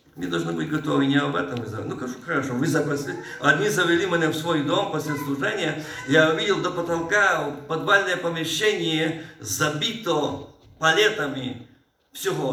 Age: 50-69